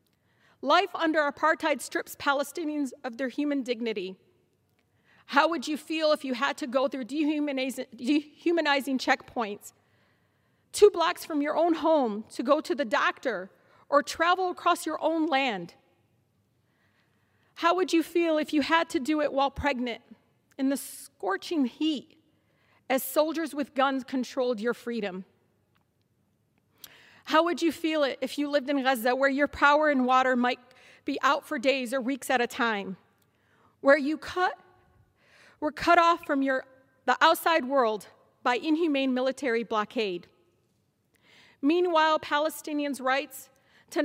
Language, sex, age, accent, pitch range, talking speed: English, female, 40-59, American, 255-310 Hz, 145 wpm